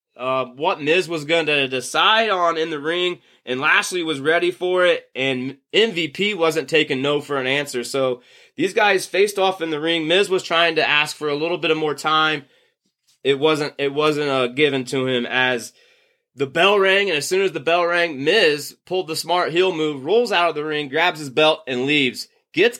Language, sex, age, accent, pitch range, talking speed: English, male, 20-39, American, 135-165 Hz, 215 wpm